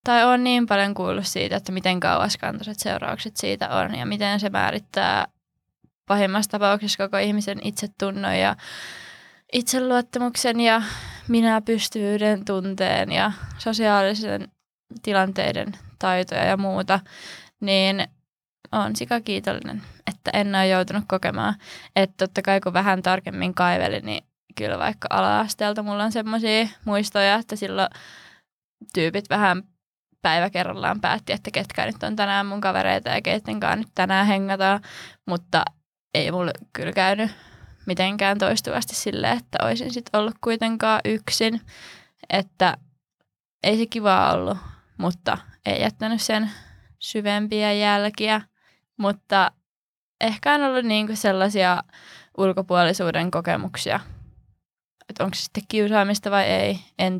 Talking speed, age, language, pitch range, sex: 120 wpm, 20-39, Finnish, 185-215 Hz, female